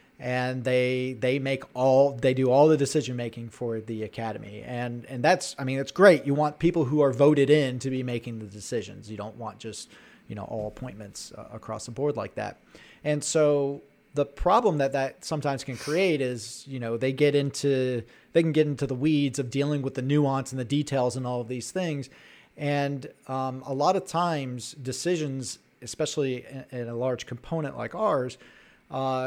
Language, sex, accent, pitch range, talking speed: English, male, American, 125-150 Hz, 195 wpm